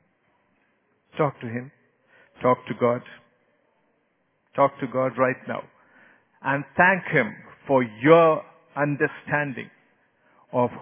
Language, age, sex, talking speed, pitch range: English, 50-69, male, 100 wpm, 120-165 Hz